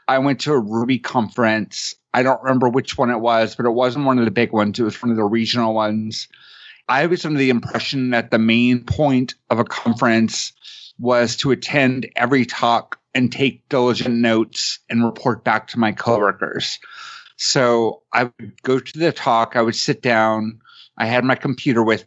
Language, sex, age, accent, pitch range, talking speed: English, male, 30-49, American, 110-130 Hz, 195 wpm